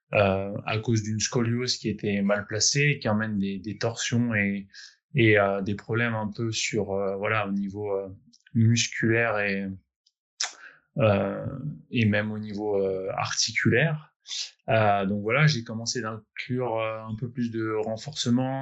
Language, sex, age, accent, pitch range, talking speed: French, male, 20-39, French, 105-125 Hz, 155 wpm